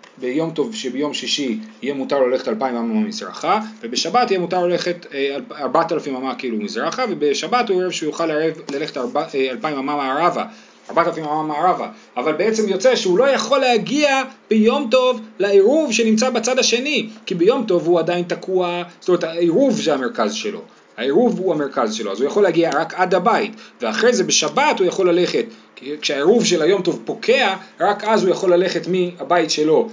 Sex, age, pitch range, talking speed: male, 30-49, 165-230 Hz, 165 wpm